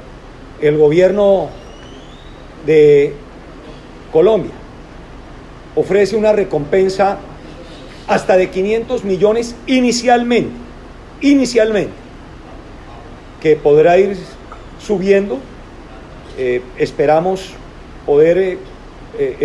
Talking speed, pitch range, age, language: 65 wpm, 150-220 Hz, 40-59, Spanish